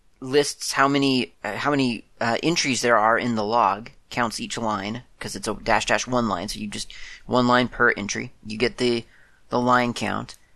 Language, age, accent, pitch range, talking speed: English, 30-49, American, 110-140 Hz, 205 wpm